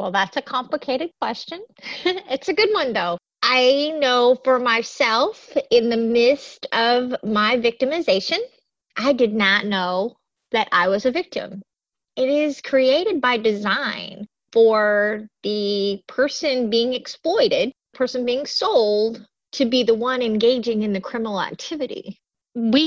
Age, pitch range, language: 30-49, 215-275 Hz, English